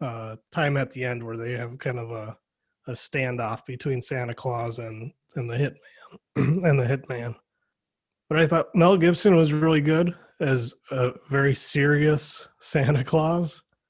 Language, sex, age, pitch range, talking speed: English, male, 20-39, 125-160 Hz, 150 wpm